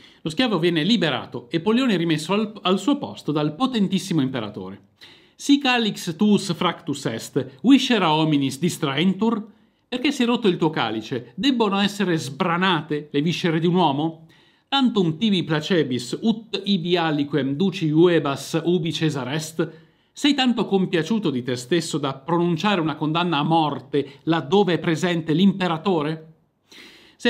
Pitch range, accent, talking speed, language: 140-190 Hz, native, 140 wpm, Italian